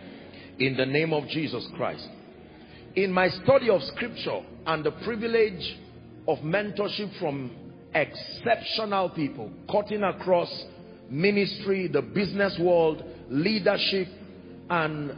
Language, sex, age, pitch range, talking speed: English, male, 50-69, 150-210 Hz, 105 wpm